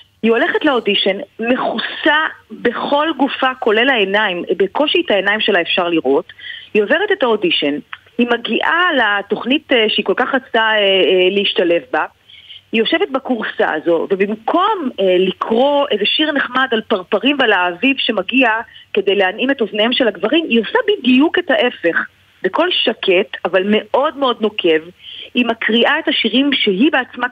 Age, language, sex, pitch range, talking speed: 30-49, Hebrew, female, 205-285 Hz, 140 wpm